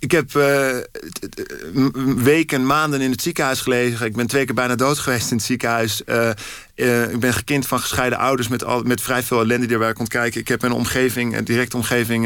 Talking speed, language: 225 wpm, Dutch